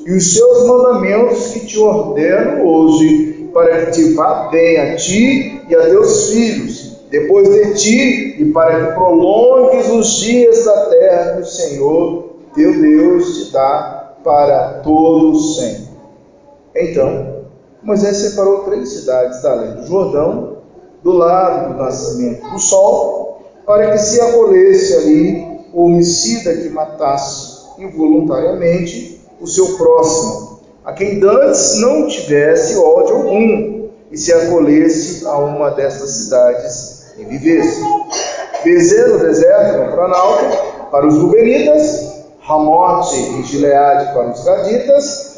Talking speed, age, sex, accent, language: 135 wpm, 40-59, male, Brazilian, Portuguese